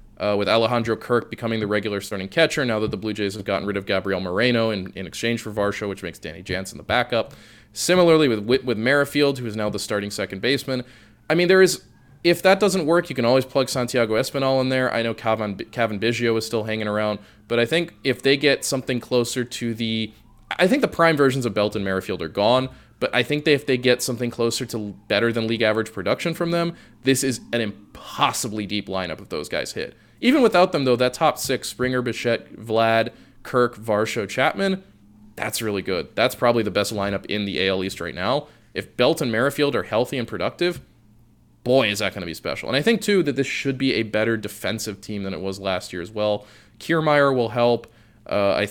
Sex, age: male, 20-39